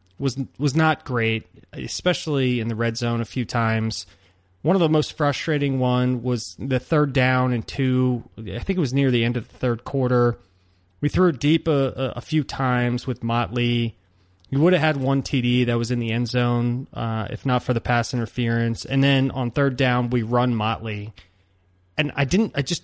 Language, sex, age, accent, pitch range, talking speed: English, male, 20-39, American, 115-135 Hz, 200 wpm